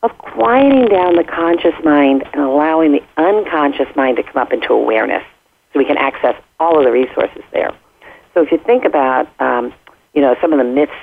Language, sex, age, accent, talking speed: English, female, 50-69, American, 200 wpm